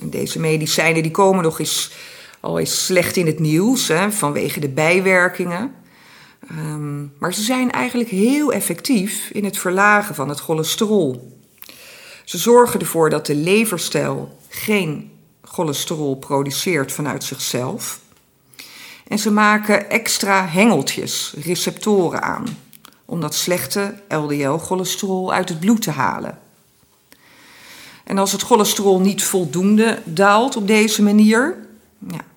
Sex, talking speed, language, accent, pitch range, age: female, 125 wpm, Dutch, Dutch, 155-210 Hz, 50-69